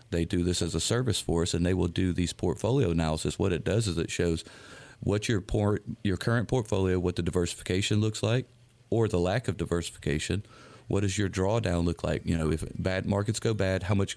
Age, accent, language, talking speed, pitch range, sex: 40-59, American, English, 220 wpm, 85-115 Hz, male